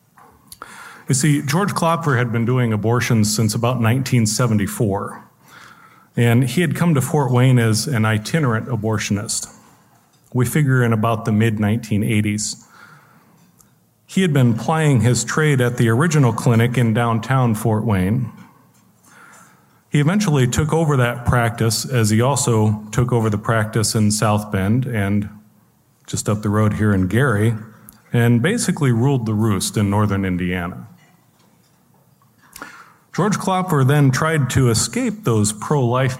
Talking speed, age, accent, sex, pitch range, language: 135 wpm, 40-59, American, male, 110-145 Hz, English